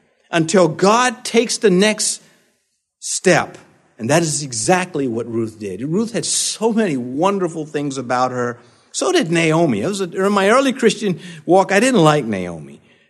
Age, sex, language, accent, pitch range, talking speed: 50-69, male, English, American, 145-230 Hz, 160 wpm